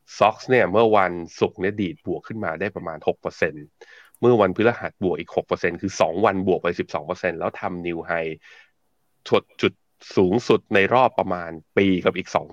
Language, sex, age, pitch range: Thai, male, 20-39, 85-115 Hz